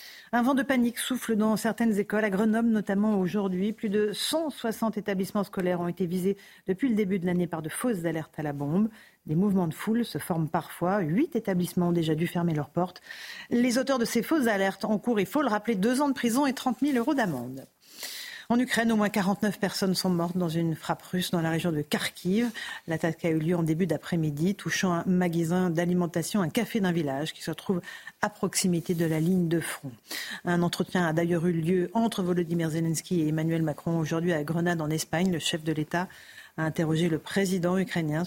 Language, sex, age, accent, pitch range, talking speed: French, female, 40-59, French, 170-215 Hz, 215 wpm